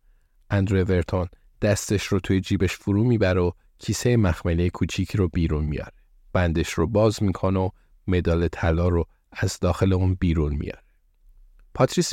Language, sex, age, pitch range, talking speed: Persian, male, 50-69, 85-105 Hz, 145 wpm